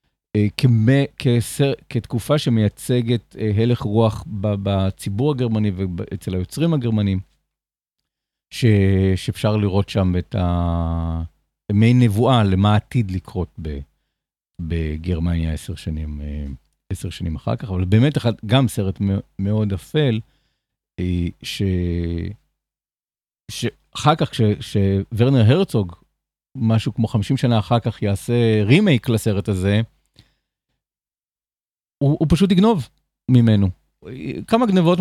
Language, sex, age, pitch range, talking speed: Hebrew, male, 50-69, 95-125 Hz, 100 wpm